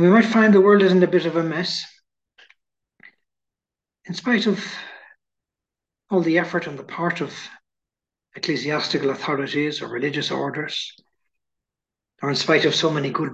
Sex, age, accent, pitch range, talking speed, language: male, 60-79, Irish, 150-185 Hz, 150 wpm, English